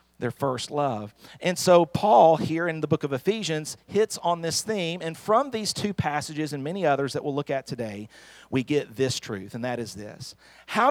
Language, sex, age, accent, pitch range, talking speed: English, male, 40-59, American, 110-170 Hz, 210 wpm